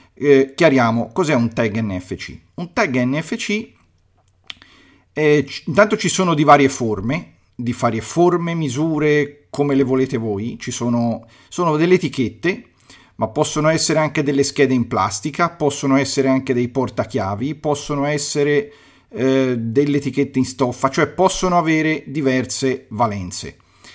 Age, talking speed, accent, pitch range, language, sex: 40-59, 140 wpm, native, 115-155 Hz, Italian, male